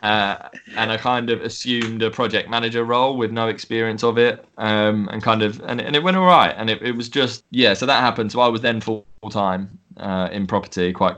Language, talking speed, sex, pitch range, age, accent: Swedish, 235 wpm, male, 100-115 Hz, 20-39, British